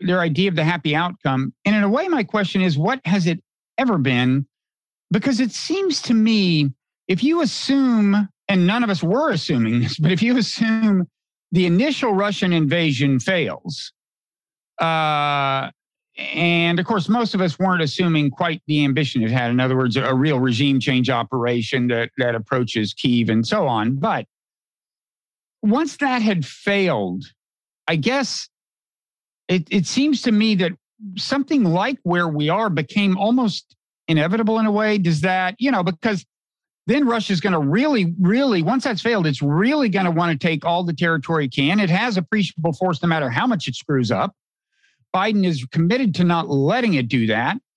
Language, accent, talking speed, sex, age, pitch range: English, American, 175 wpm, male, 50-69, 150-205 Hz